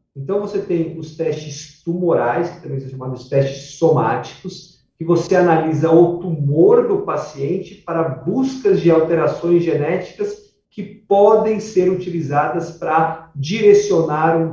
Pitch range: 150-185 Hz